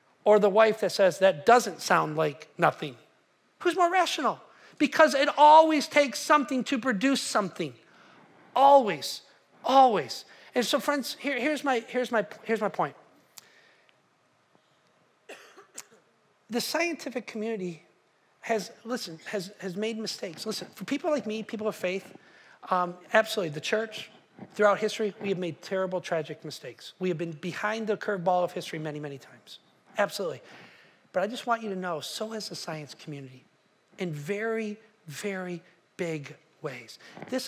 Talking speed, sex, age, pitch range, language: 150 wpm, male, 50-69, 175-235 Hz, English